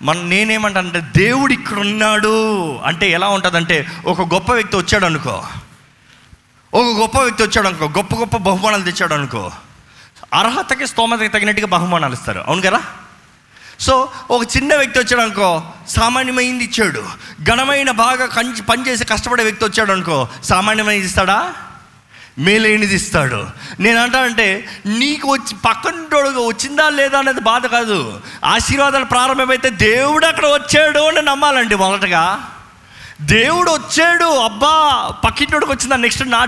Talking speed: 115 wpm